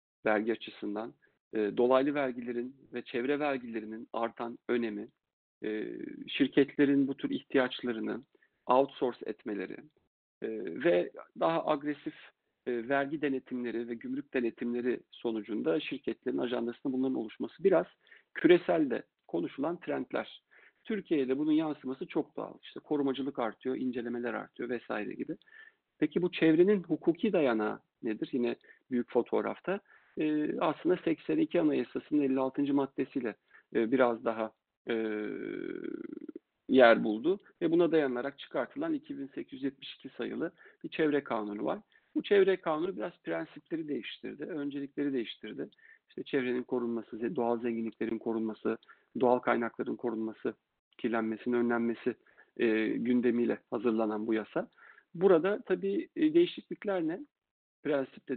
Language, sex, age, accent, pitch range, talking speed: Turkish, male, 50-69, native, 120-175 Hz, 105 wpm